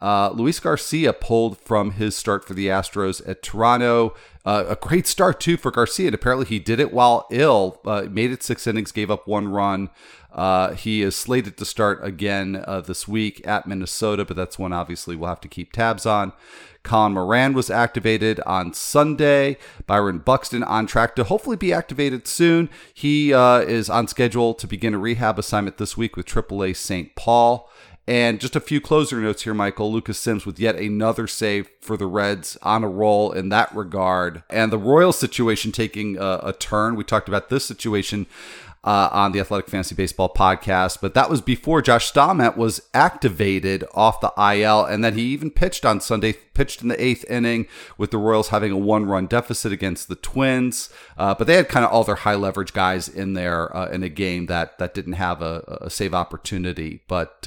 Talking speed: 200 wpm